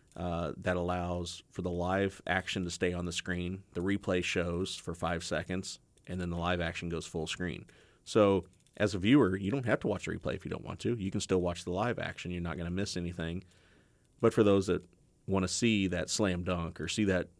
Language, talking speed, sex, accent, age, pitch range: English, 235 wpm, male, American, 30-49, 85-100 Hz